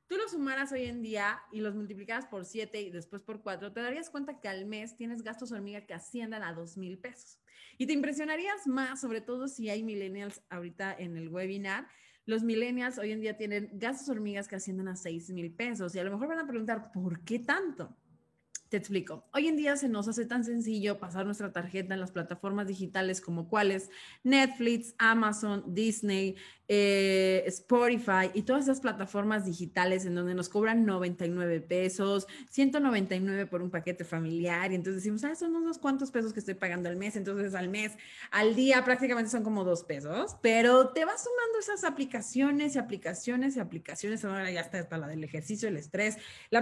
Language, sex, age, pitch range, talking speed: Spanish, female, 30-49, 190-240 Hz, 190 wpm